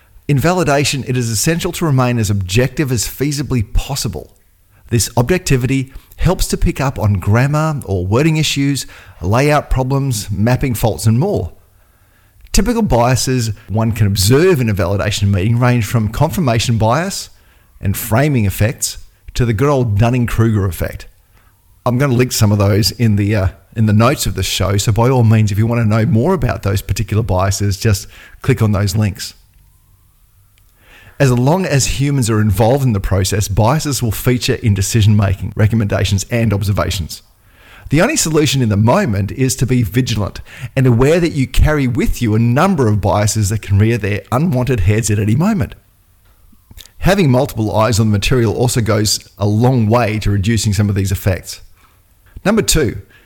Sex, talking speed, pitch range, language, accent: male, 170 wpm, 100-125 Hz, English, Australian